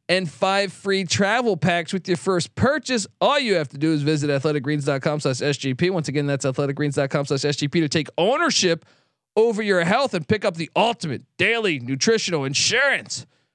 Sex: male